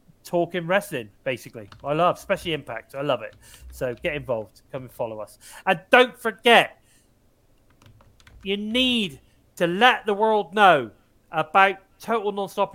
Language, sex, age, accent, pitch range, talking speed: English, male, 30-49, British, 125-180 Hz, 135 wpm